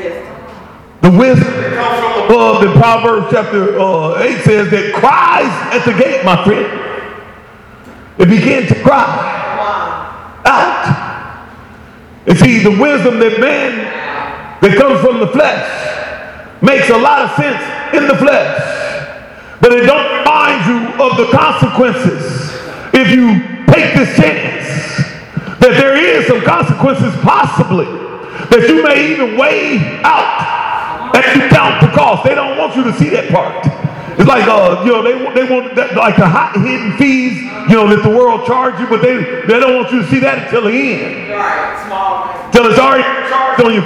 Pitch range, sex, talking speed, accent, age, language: 200-265 Hz, male, 165 wpm, American, 40-59, English